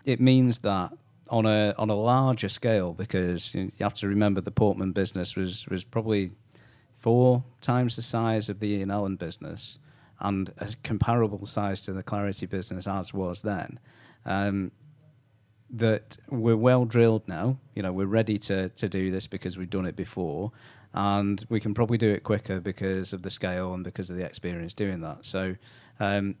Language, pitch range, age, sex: English, 95-115 Hz, 40-59, male